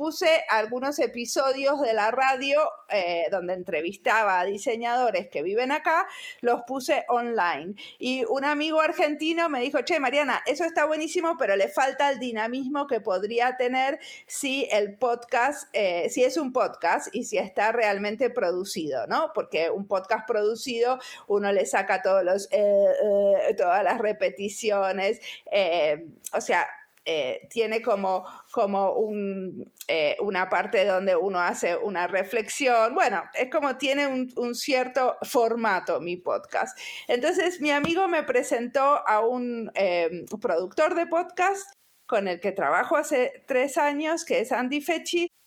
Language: Spanish